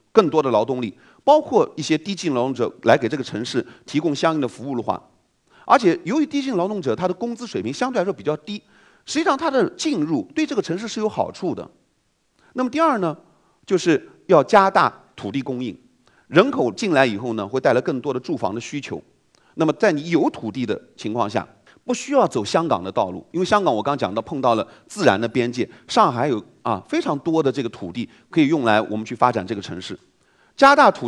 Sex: male